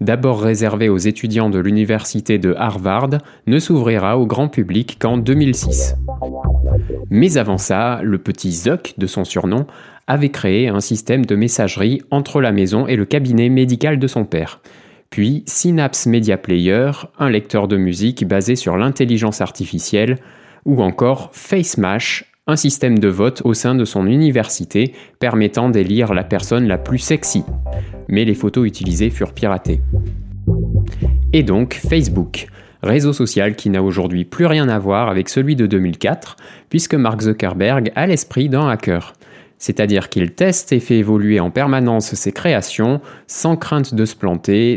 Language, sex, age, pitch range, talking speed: French, male, 20-39, 95-130 Hz, 155 wpm